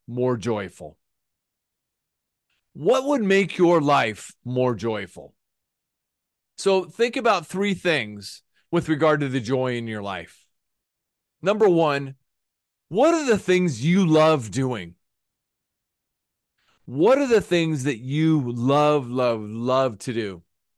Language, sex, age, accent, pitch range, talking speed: English, male, 30-49, American, 115-170 Hz, 120 wpm